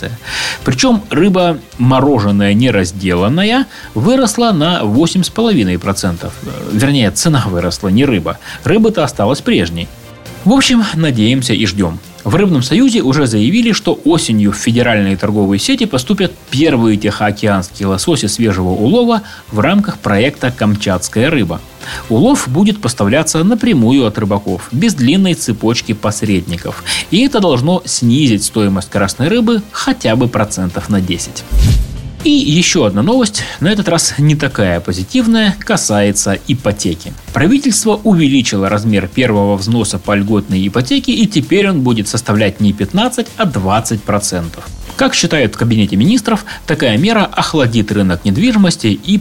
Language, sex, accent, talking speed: Russian, male, native, 130 wpm